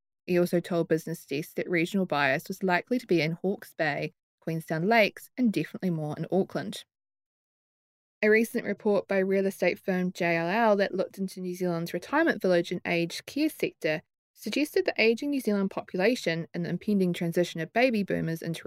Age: 20-39